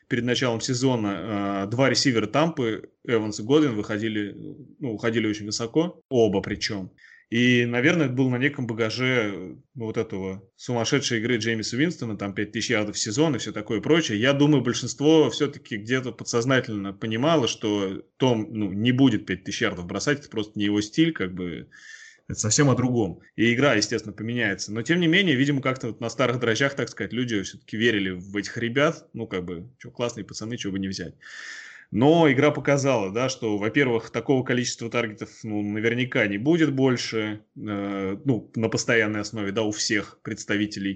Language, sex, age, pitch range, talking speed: Russian, male, 20-39, 105-130 Hz, 170 wpm